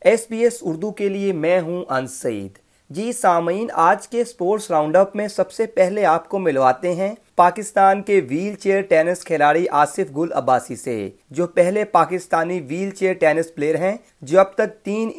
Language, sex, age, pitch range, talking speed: Urdu, male, 30-49, 155-195 Hz, 180 wpm